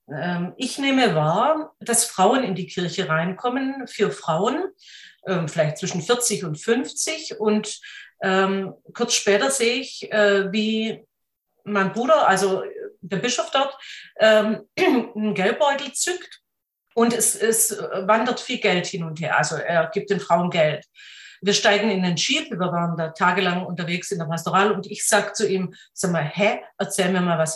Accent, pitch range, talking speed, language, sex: German, 185-235 Hz, 160 wpm, German, female